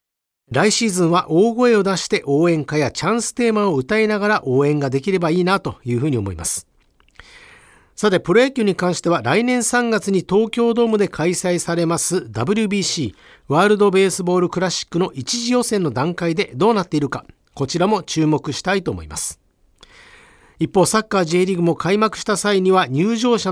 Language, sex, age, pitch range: Japanese, male, 50-69, 155-210 Hz